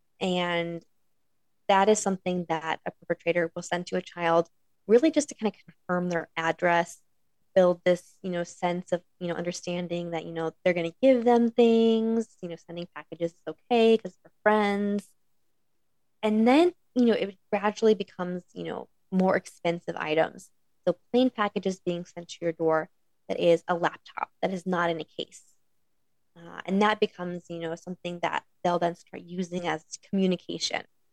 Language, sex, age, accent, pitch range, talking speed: English, female, 20-39, American, 170-205 Hz, 175 wpm